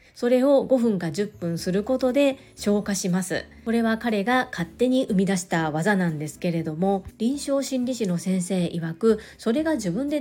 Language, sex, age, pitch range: Japanese, female, 40-59, 180-235 Hz